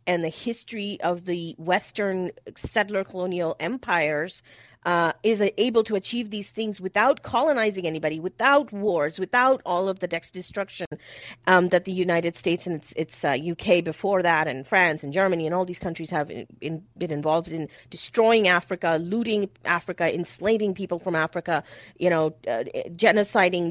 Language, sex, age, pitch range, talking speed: English, female, 30-49, 160-215 Hz, 155 wpm